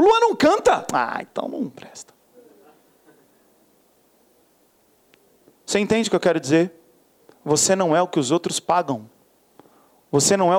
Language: Portuguese